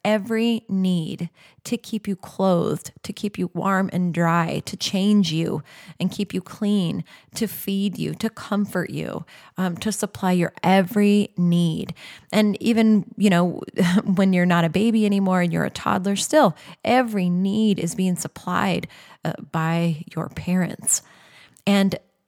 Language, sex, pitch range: English, female, 170-210 Hz